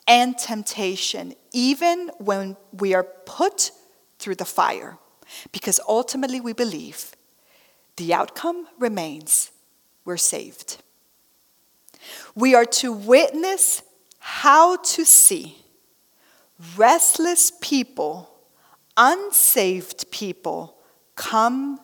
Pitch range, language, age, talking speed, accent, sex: 185-260 Hz, English, 40-59, 85 wpm, American, female